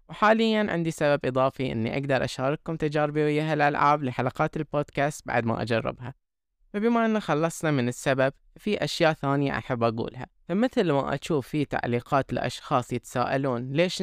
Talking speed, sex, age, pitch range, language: 140 wpm, female, 20-39, 135-185 Hz, Arabic